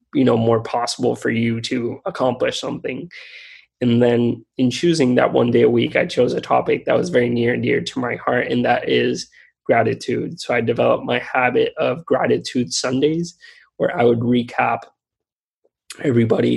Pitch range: 115-130 Hz